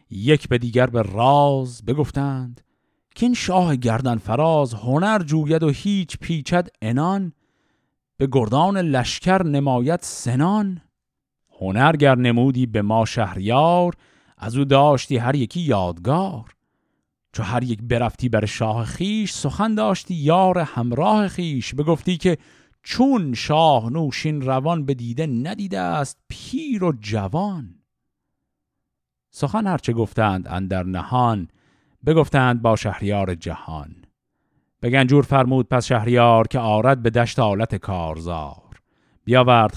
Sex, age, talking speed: male, 50-69, 120 wpm